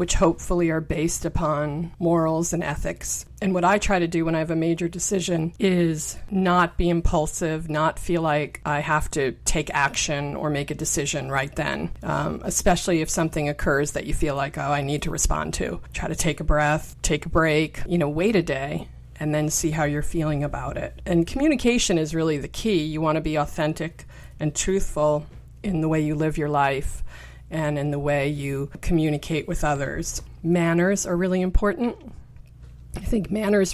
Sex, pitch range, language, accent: female, 145-170 Hz, English, American